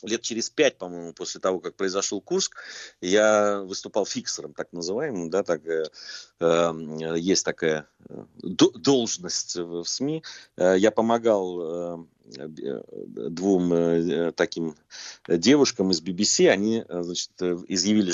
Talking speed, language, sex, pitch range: 125 wpm, Russian, male, 85-105 Hz